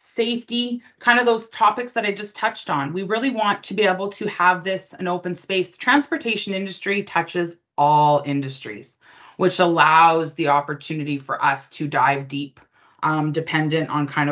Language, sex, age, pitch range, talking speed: English, female, 20-39, 150-200 Hz, 170 wpm